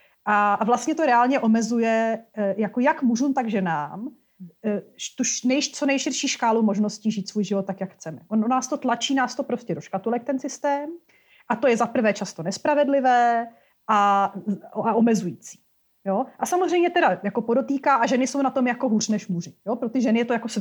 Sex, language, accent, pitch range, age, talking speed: female, Czech, native, 205-260 Hz, 30-49, 185 wpm